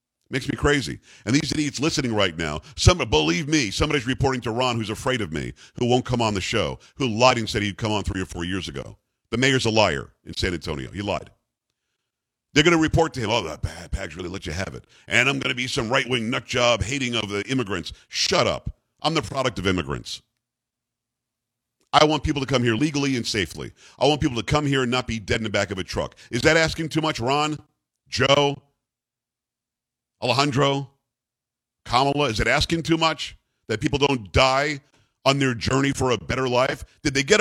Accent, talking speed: American, 215 wpm